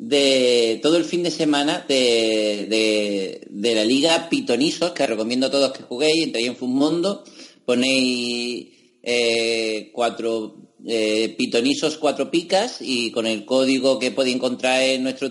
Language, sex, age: Spanish, male, 30-49